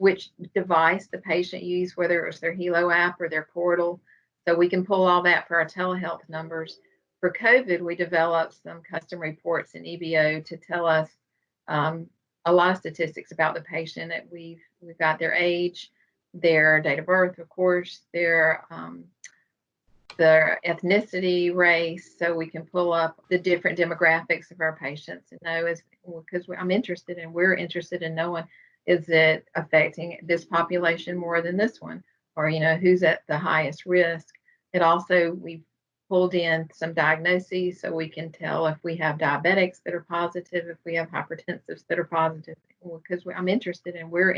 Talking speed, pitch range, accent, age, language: 175 wpm, 165-180 Hz, American, 40-59, English